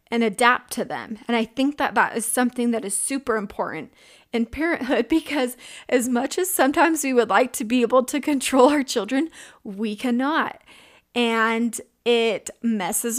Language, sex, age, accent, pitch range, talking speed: English, female, 30-49, American, 225-265 Hz, 170 wpm